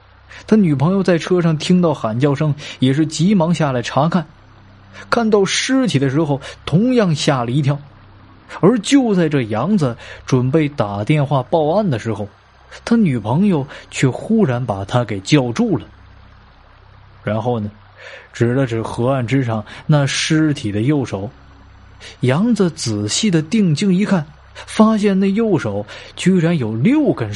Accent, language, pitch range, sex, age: native, Chinese, 105-175 Hz, male, 20-39